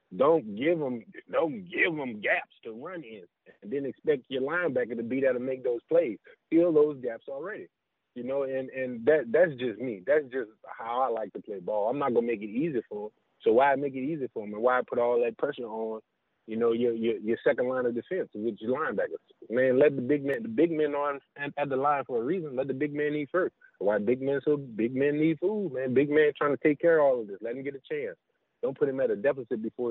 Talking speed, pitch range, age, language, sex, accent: 260 wpm, 115-190 Hz, 20-39, English, male, American